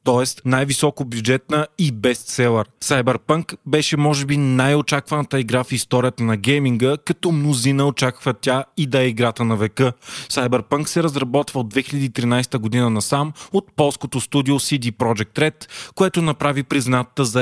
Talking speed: 145 wpm